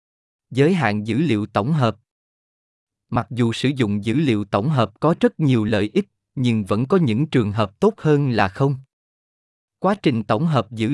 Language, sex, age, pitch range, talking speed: Vietnamese, male, 20-39, 110-155 Hz, 185 wpm